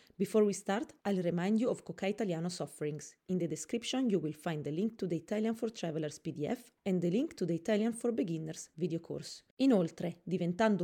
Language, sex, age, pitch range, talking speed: English, female, 30-49, 170-230 Hz, 200 wpm